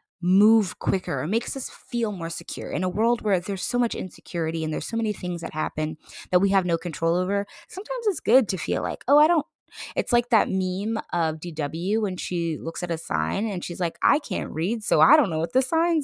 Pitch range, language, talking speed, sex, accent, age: 175-245 Hz, English, 235 wpm, female, American, 20-39